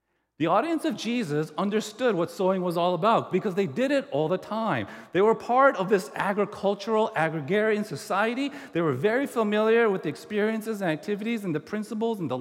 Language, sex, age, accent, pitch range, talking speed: English, male, 40-59, American, 145-215 Hz, 190 wpm